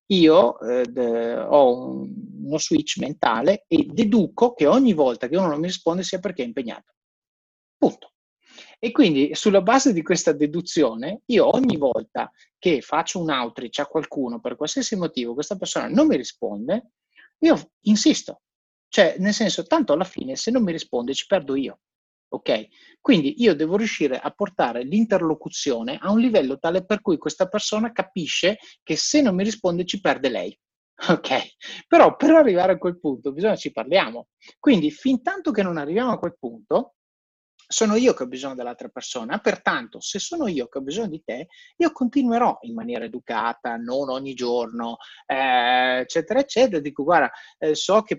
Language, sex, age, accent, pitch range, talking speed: Italian, male, 30-49, native, 150-235 Hz, 170 wpm